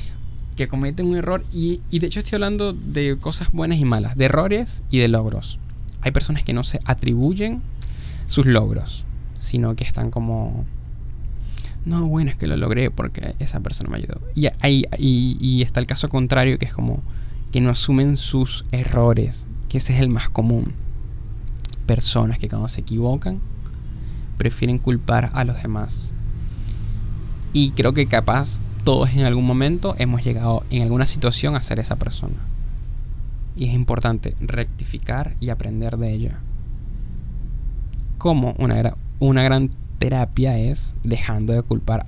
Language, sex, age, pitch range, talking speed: Spanish, male, 10-29, 110-135 Hz, 155 wpm